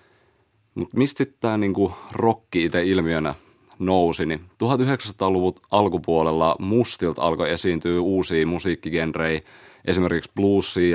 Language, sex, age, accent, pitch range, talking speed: Finnish, male, 30-49, native, 80-100 Hz, 100 wpm